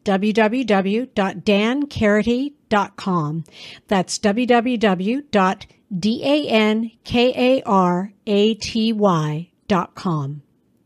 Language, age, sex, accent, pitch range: English, 60-79, female, American, 185-235 Hz